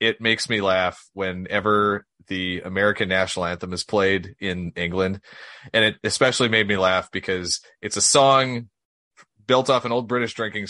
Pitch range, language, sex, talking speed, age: 95-115 Hz, English, male, 165 wpm, 30-49